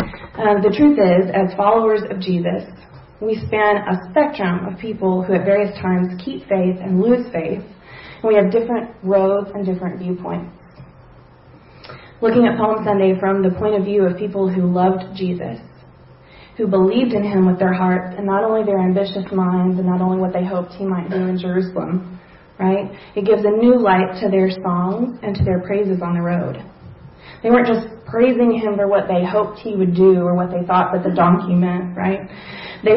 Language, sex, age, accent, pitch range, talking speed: English, female, 30-49, American, 185-210 Hz, 195 wpm